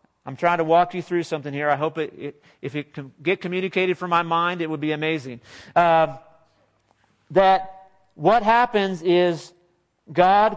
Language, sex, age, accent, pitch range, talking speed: English, male, 40-59, American, 150-190 Hz, 170 wpm